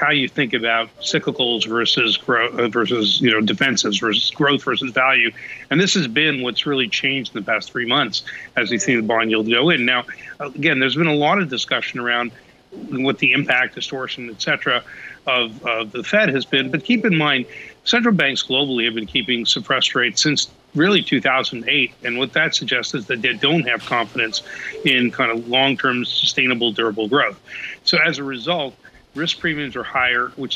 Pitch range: 120-150 Hz